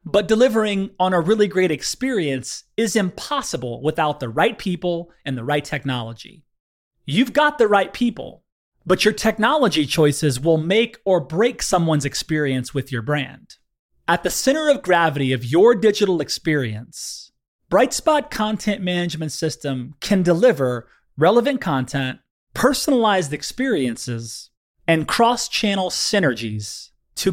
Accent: American